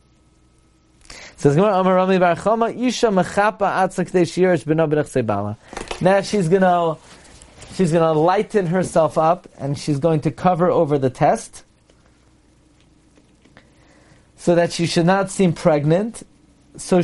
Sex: male